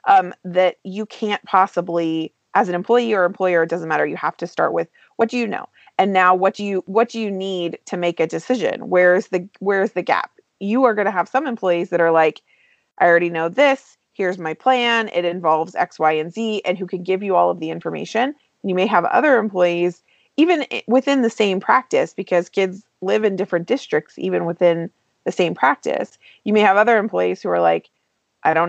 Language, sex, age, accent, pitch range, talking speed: English, female, 30-49, American, 170-215 Hz, 215 wpm